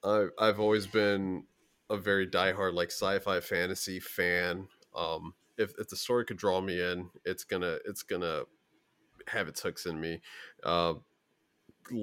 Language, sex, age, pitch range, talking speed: English, male, 30-49, 90-105 Hz, 145 wpm